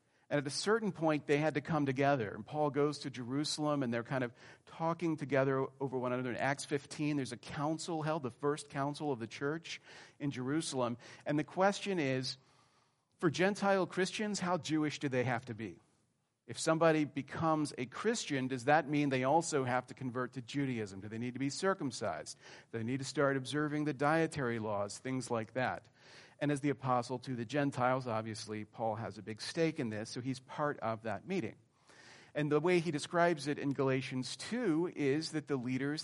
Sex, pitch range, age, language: male, 125-155 Hz, 40-59, English